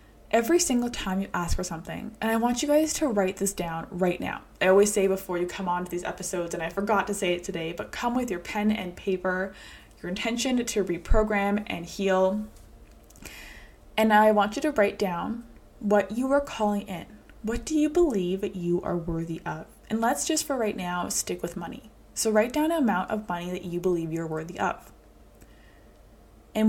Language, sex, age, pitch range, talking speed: English, female, 20-39, 185-230 Hz, 205 wpm